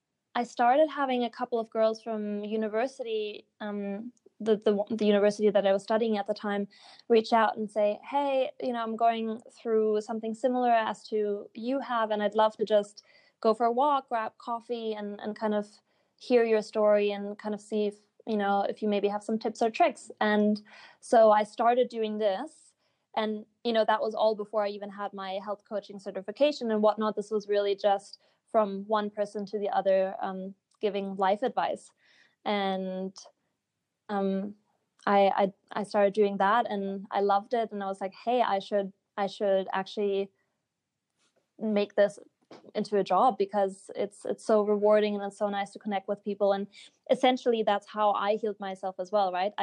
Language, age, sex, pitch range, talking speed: English, 20-39, female, 200-225 Hz, 190 wpm